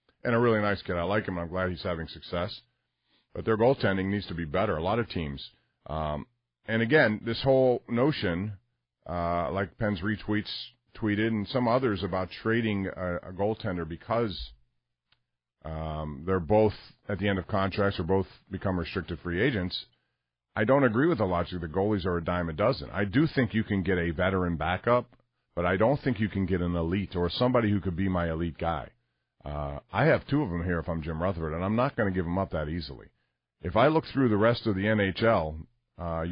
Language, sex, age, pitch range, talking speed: English, male, 40-59, 85-110 Hz, 210 wpm